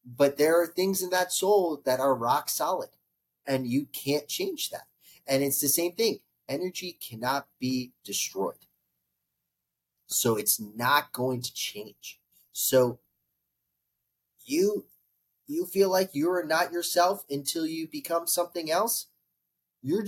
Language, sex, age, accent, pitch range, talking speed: English, male, 30-49, American, 125-200 Hz, 135 wpm